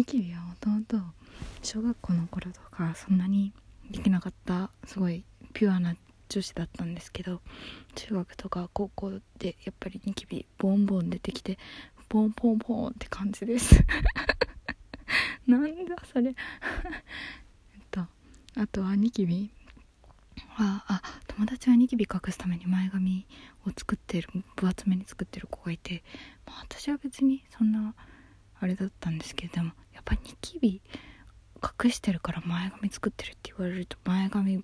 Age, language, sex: 20-39, Japanese, female